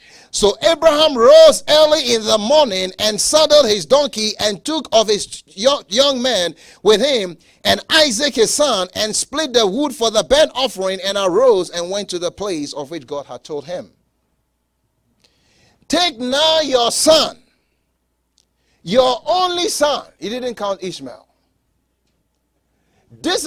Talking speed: 145 wpm